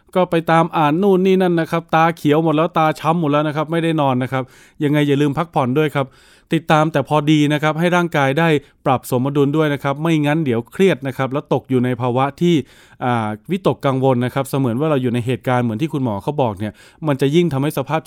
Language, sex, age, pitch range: Thai, male, 20-39, 130-165 Hz